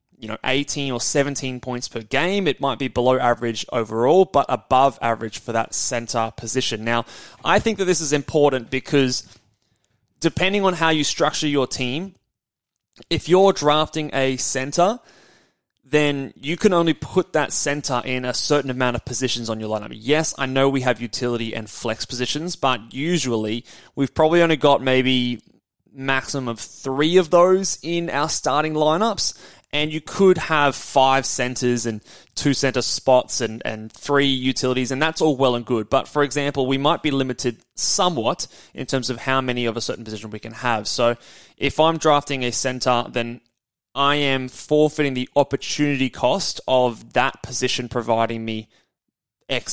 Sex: male